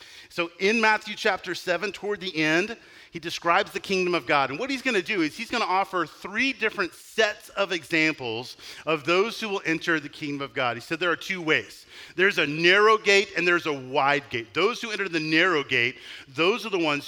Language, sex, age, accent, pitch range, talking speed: English, male, 40-59, American, 140-200 Hz, 225 wpm